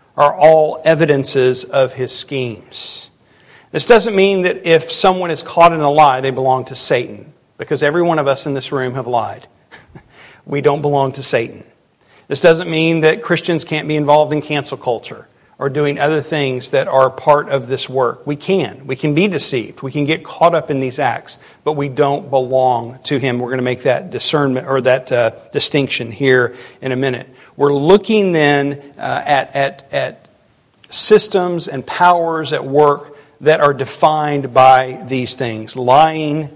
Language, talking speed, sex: English, 175 wpm, male